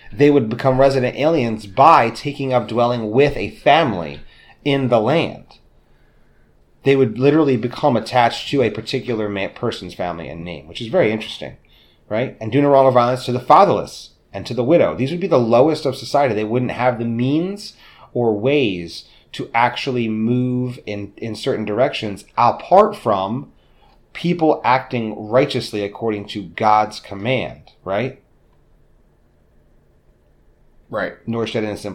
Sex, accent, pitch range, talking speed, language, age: male, American, 110-150 Hz, 150 wpm, English, 30-49